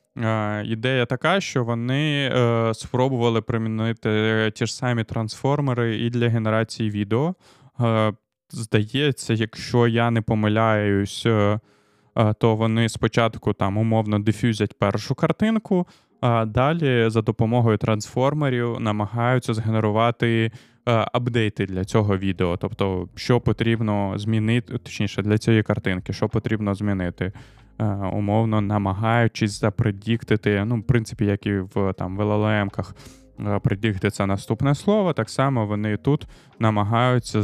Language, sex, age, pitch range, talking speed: Ukrainian, male, 20-39, 105-125 Hz, 110 wpm